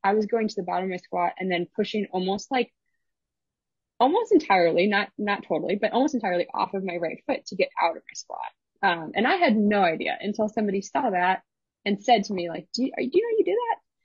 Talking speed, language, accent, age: 250 wpm, English, American, 20-39